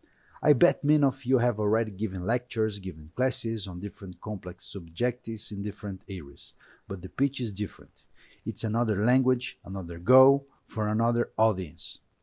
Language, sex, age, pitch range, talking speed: English, male, 50-69, 105-135 Hz, 150 wpm